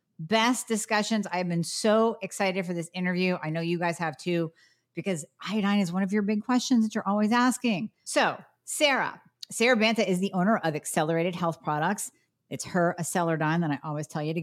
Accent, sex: American, female